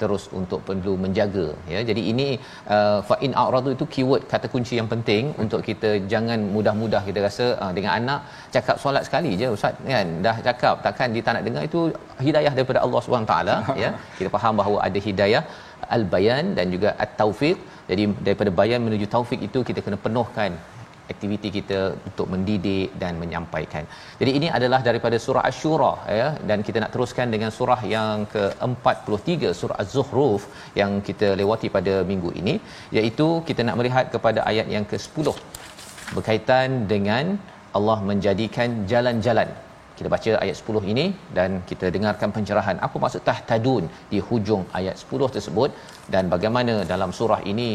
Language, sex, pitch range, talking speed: Malayalam, male, 100-120 Hz, 165 wpm